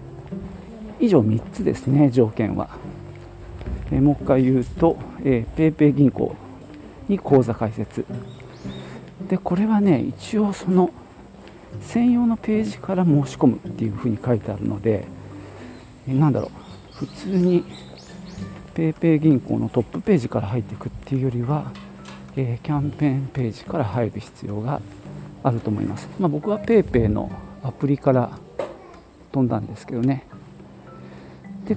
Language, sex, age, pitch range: Japanese, male, 50-69, 105-160 Hz